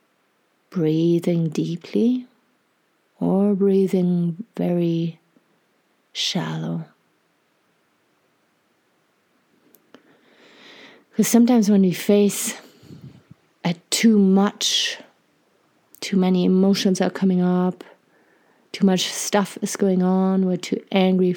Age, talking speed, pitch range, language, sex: 30-49, 80 wpm, 180-205 Hz, English, female